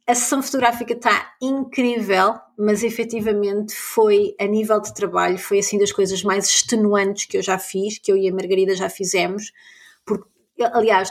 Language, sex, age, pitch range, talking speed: Portuguese, female, 20-39, 200-245 Hz, 165 wpm